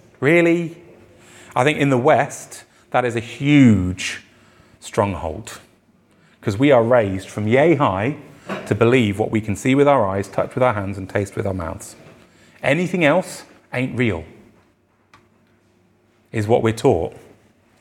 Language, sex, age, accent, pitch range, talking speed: English, male, 30-49, British, 110-140 Hz, 150 wpm